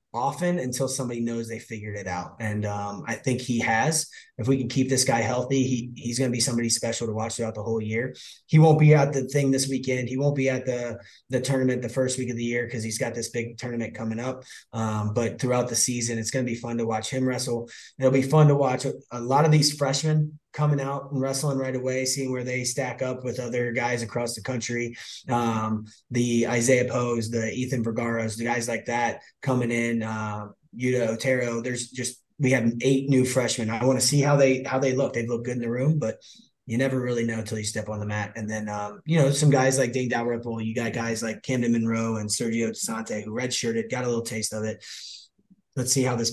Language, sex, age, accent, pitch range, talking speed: English, male, 20-39, American, 115-130 Hz, 240 wpm